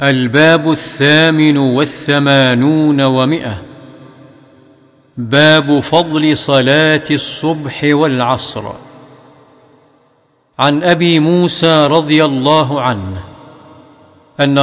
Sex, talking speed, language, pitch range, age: male, 65 wpm, Arabic, 130-155 Hz, 50-69